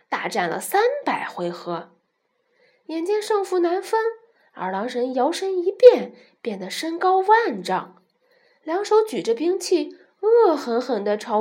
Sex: female